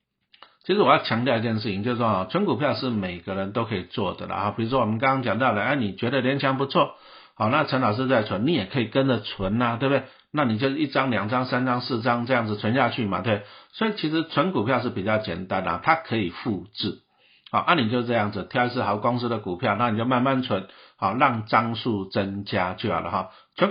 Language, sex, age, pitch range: Chinese, male, 50-69, 105-130 Hz